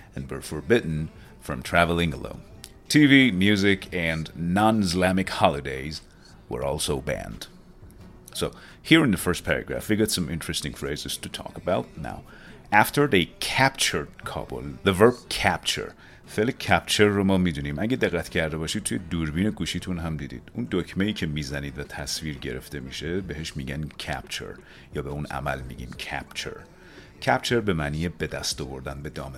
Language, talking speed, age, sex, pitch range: Persian, 155 wpm, 40-59, male, 75-95 Hz